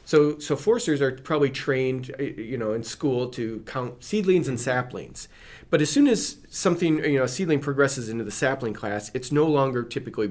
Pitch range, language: 115-145 Hz, English